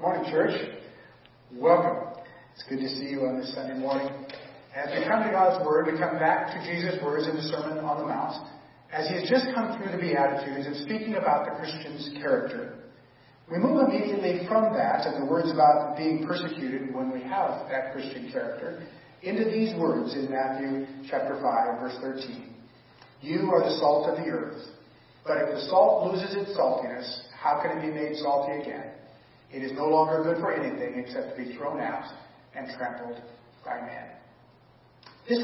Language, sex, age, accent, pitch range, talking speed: English, male, 40-59, American, 135-185 Hz, 185 wpm